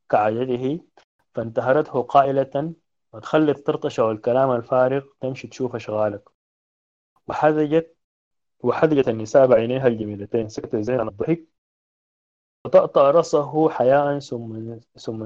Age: 30-49